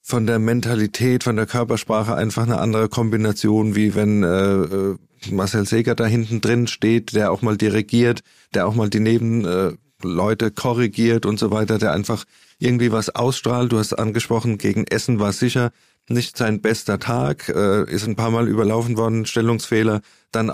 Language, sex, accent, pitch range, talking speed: German, male, German, 105-115 Hz, 170 wpm